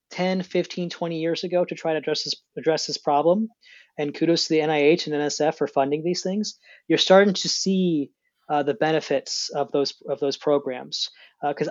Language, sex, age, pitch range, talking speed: English, male, 30-49, 150-180 Hz, 190 wpm